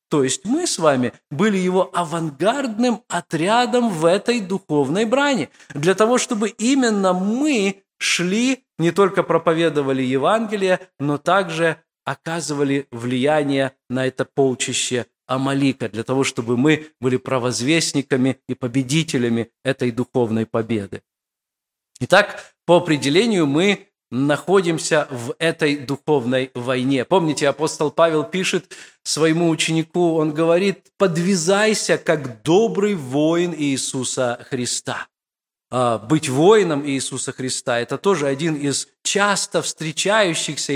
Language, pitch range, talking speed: Russian, 135-185 Hz, 110 wpm